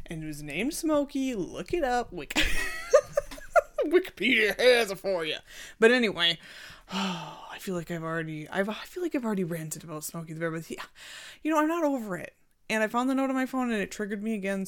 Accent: American